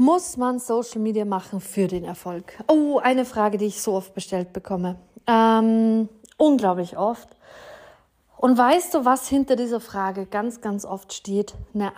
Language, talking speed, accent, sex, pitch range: German, 160 wpm, German, female, 205-255 Hz